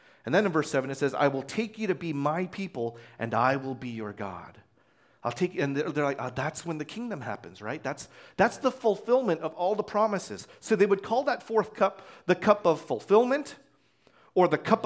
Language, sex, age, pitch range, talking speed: English, male, 40-59, 135-215 Hz, 220 wpm